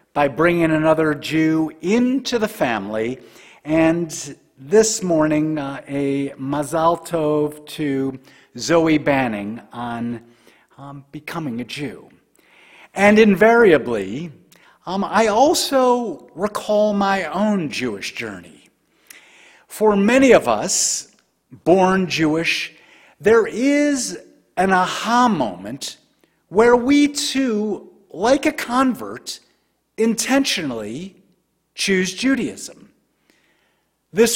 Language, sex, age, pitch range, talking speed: English, male, 50-69, 155-225 Hz, 95 wpm